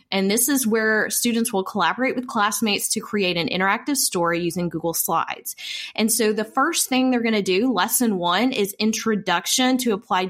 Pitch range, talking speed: 185-245 Hz, 185 wpm